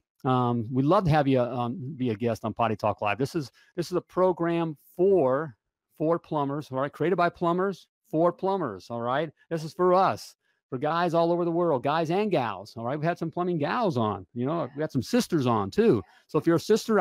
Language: English